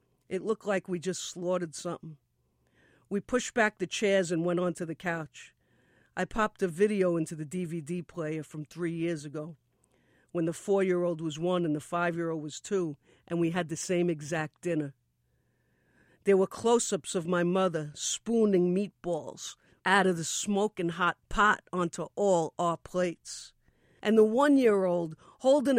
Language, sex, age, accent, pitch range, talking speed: English, female, 50-69, American, 170-225 Hz, 160 wpm